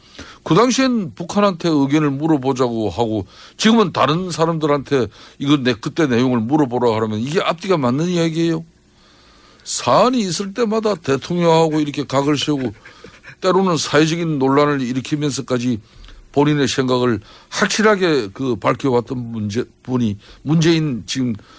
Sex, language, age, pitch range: male, Korean, 60-79, 120-165 Hz